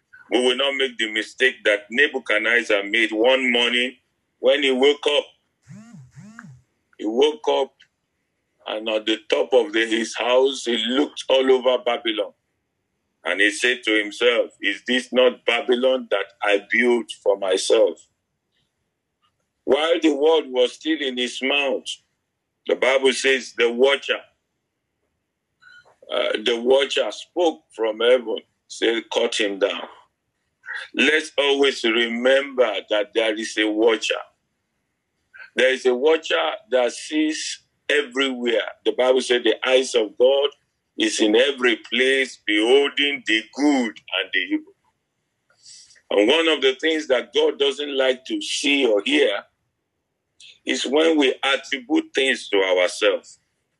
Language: English